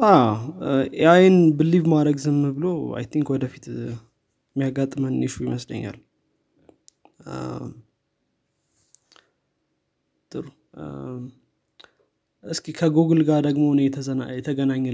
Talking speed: 115 wpm